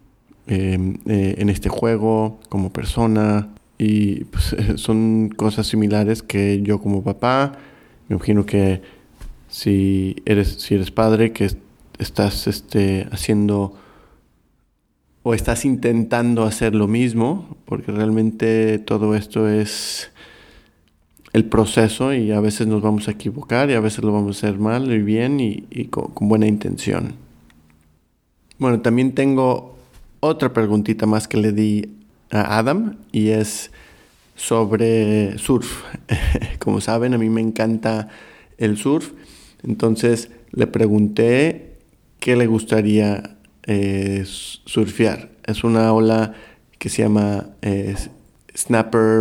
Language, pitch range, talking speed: Spanish, 100-115 Hz, 130 wpm